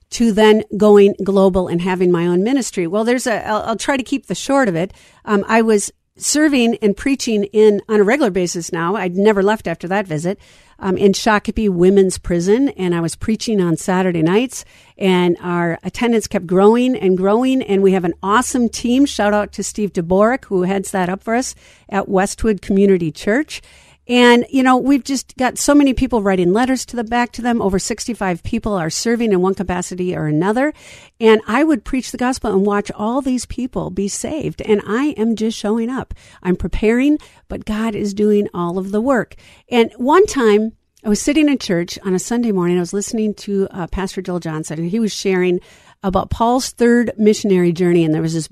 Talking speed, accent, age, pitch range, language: 205 wpm, American, 50-69, 185-235 Hz, English